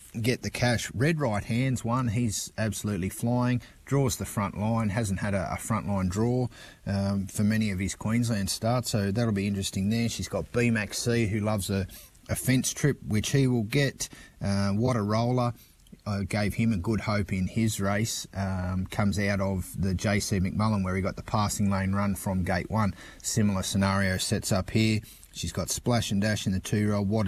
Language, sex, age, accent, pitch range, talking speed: English, male, 30-49, Australian, 100-120 Hz, 200 wpm